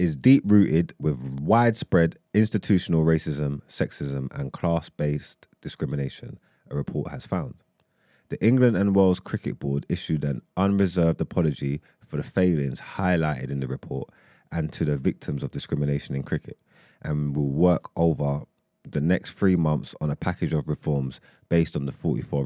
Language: English